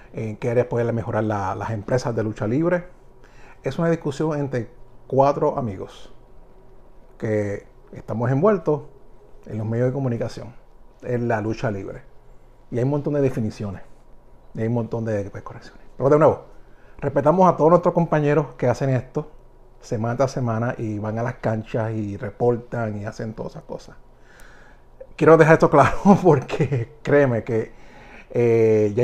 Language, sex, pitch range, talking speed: Spanish, male, 115-145 Hz, 155 wpm